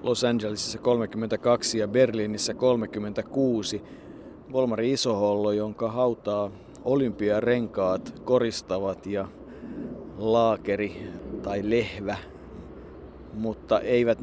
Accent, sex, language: native, male, Finnish